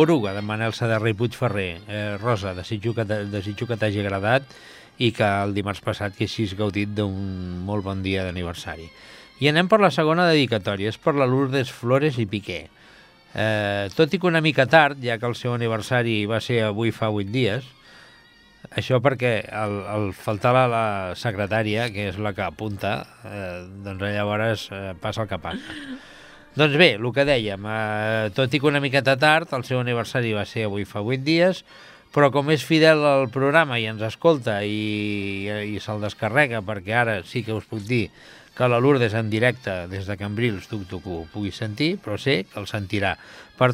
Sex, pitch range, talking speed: male, 105-135 Hz, 180 wpm